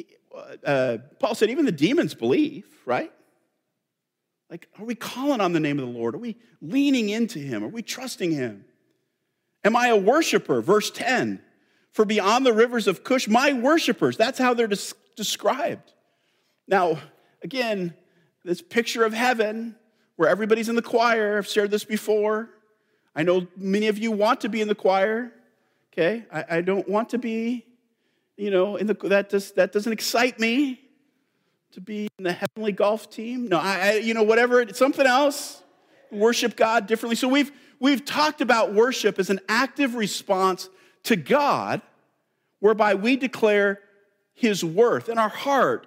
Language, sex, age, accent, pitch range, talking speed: English, male, 50-69, American, 195-245 Hz, 165 wpm